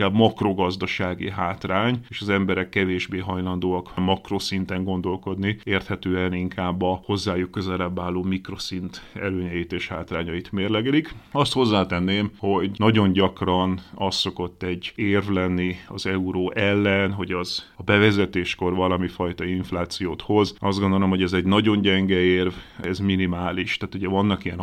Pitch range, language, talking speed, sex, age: 90-100 Hz, Hungarian, 135 wpm, male, 30-49